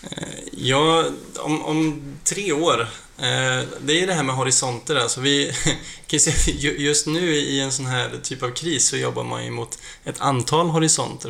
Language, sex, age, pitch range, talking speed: Swedish, male, 20-39, 120-145 Hz, 160 wpm